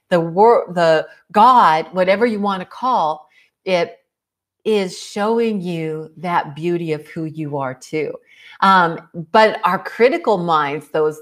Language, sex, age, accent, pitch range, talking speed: English, female, 50-69, American, 155-210 Hz, 140 wpm